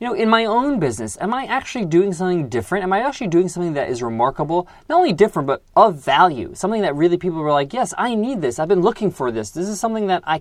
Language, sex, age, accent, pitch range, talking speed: English, male, 20-39, American, 165-215 Hz, 265 wpm